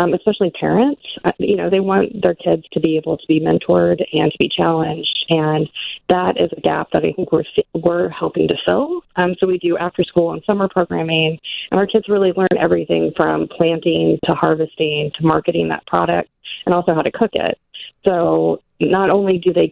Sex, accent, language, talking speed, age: female, American, English, 205 wpm, 30-49